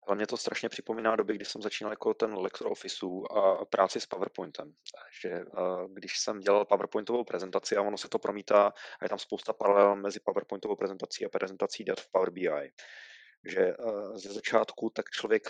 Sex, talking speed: male, 180 wpm